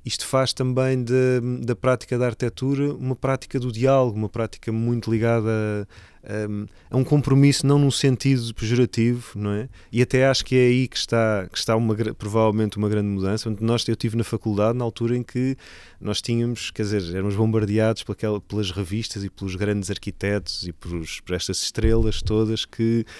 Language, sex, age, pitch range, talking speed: Portuguese, male, 20-39, 100-120 Hz, 170 wpm